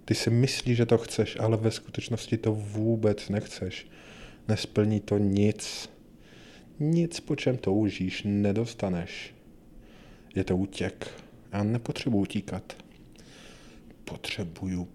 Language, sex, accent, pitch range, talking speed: Czech, male, native, 100-120 Hz, 110 wpm